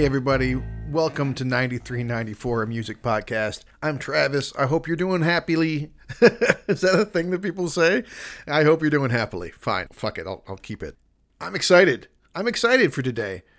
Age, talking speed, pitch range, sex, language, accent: 40-59, 175 wpm, 115-150 Hz, male, English, American